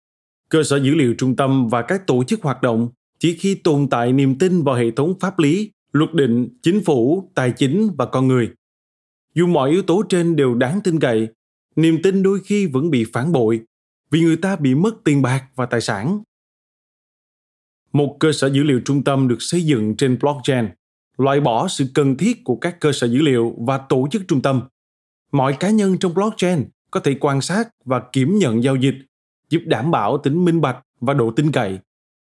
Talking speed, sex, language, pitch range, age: 205 wpm, male, Vietnamese, 125-170 Hz, 20-39